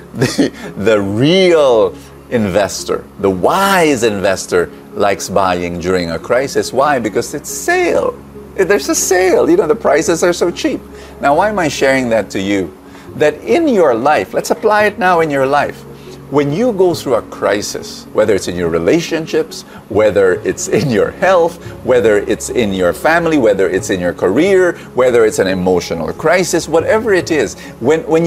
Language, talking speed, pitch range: English, 170 wpm, 135-225 Hz